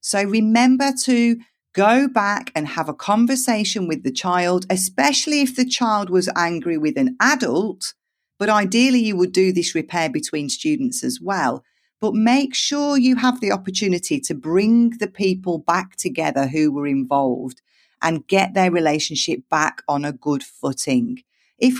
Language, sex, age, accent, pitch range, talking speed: English, female, 40-59, British, 155-225 Hz, 160 wpm